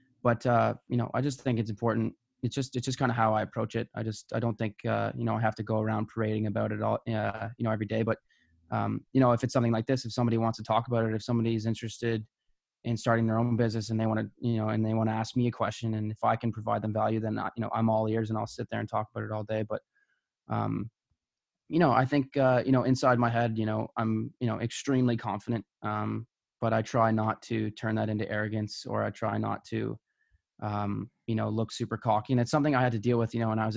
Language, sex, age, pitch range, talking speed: English, male, 20-39, 110-120 Hz, 265 wpm